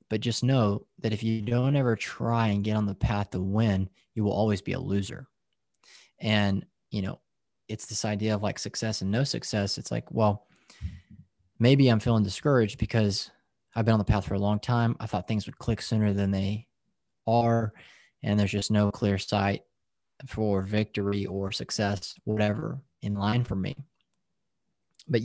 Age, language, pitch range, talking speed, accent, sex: 20-39, English, 100-120 Hz, 180 wpm, American, male